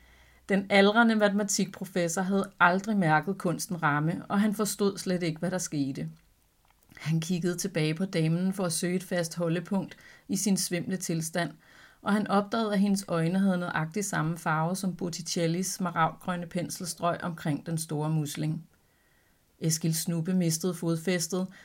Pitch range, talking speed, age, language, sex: 160-195 Hz, 145 wpm, 30-49, Danish, female